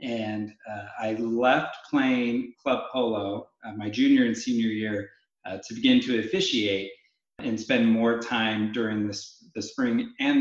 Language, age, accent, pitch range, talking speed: English, 30-49, American, 110-130 Hz, 155 wpm